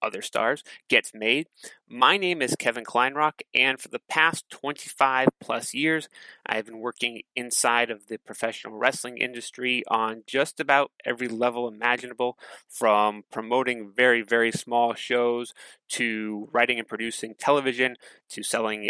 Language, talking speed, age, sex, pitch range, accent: English, 140 wpm, 30-49, male, 110-130 Hz, American